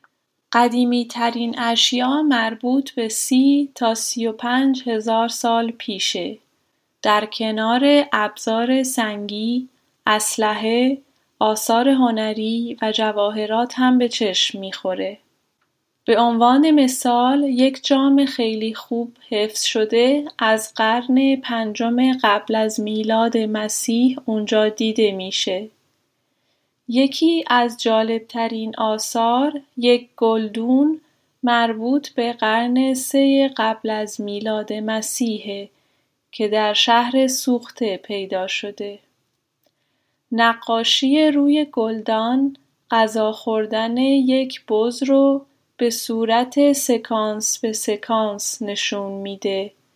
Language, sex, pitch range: Persian, female, 215-255 Hz